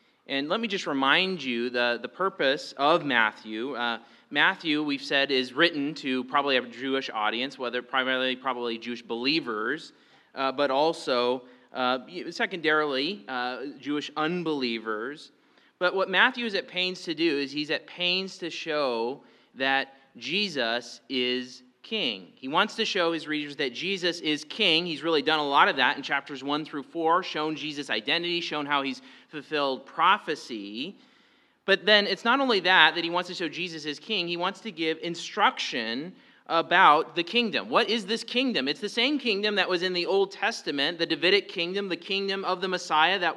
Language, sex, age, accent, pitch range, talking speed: English, male, 30-49, American, 135-190 Hz, 175 wpm